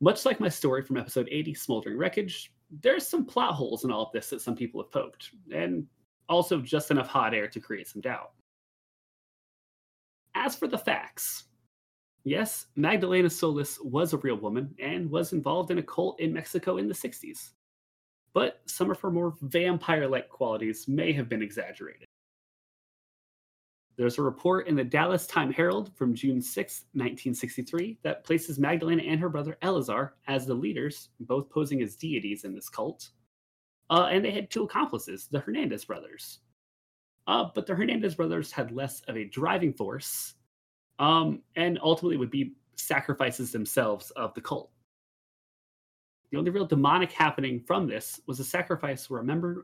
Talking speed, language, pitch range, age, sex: 165 wpm, English, 125-175 Hz, 30-49, male